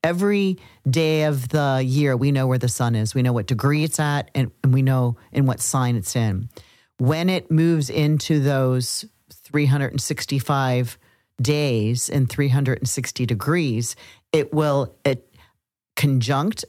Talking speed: 140 wpm